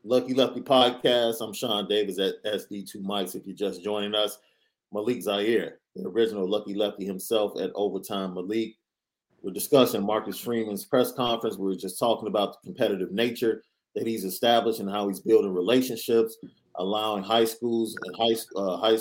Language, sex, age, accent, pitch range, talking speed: English, male, 30-49, American, 110-130 Hz, 165 wpm